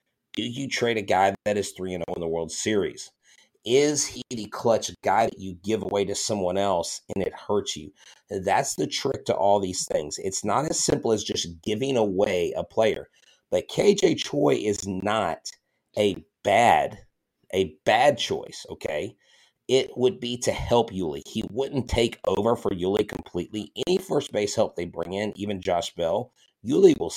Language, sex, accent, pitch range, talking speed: English, male, American, 95-115 Hz, 175 wpm